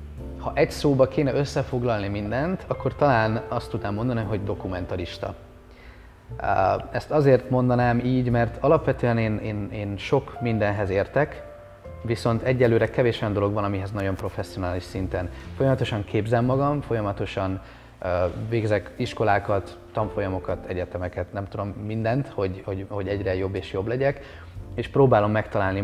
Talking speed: 130 wpm